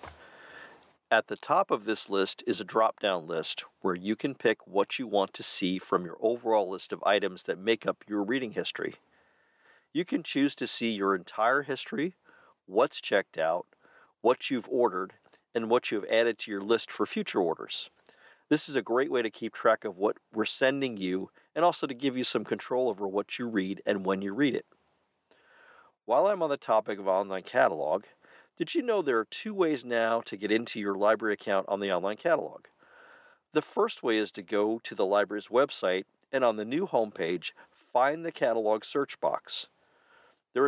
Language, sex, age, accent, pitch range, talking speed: English, male, 40-59, American, 105-140 Hz, 195 wpm